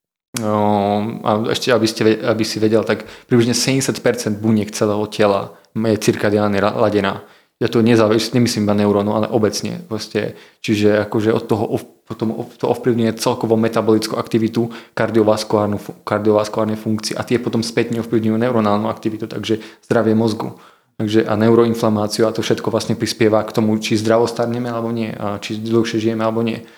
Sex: male